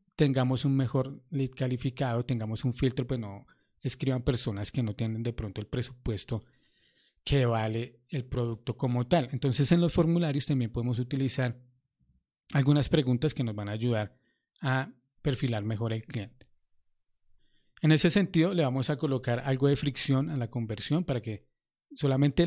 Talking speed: 160 wpm